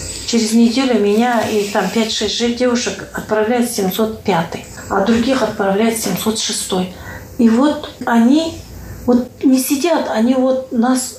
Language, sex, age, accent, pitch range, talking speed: Russian, female, 40-59, native, 205-250 Hz, 120 wpm